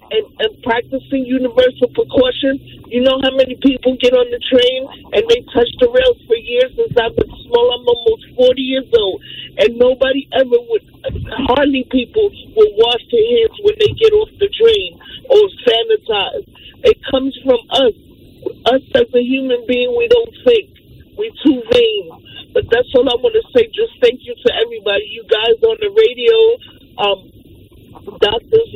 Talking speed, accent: 165 wpm, American